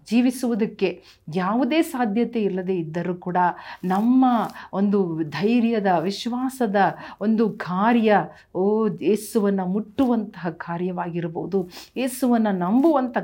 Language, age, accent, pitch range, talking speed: Kannada, 40-59, native, 180-230 Hz, 80 wpm